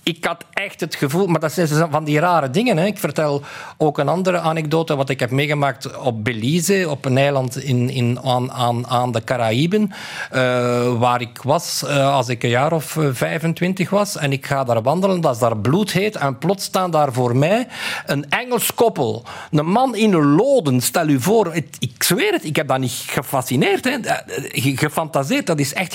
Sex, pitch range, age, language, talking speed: male, 140-205 Hz, 50-69, Dutch, 195 wpm